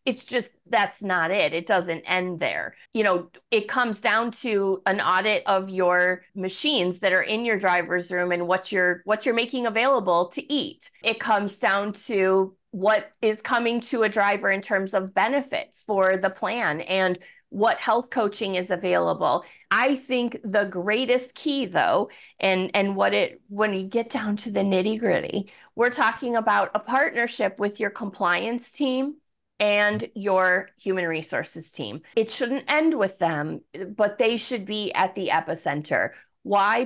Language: English